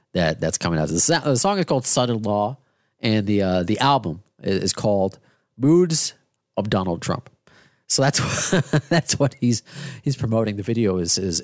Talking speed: 190 wpm